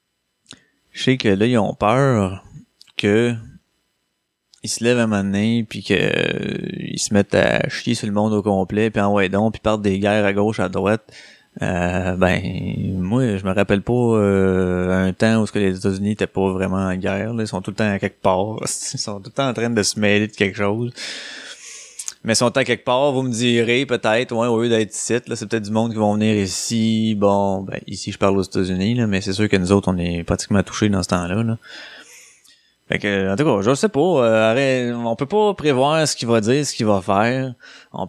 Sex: male